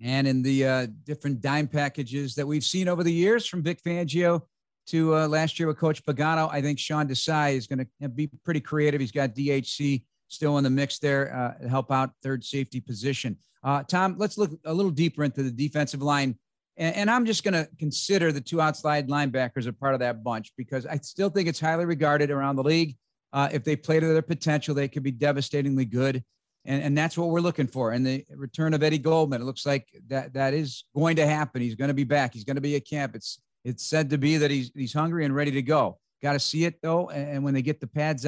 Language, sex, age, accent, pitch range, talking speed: English, male, 50-69, American, 135-165 Hz, 240 wpm